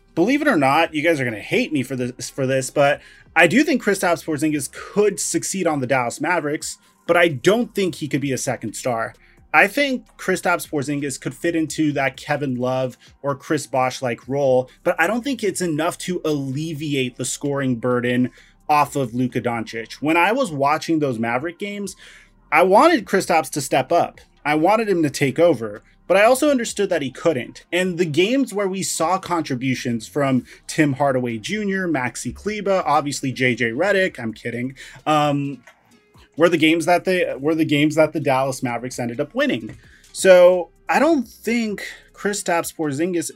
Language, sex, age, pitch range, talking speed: English, male, 30-49, 135-185 Hz, 180 wpm